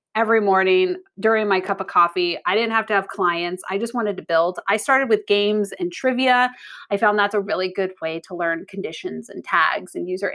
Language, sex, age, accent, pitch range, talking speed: English, female, 30-49, American, 190-240 Hz, 220 wpm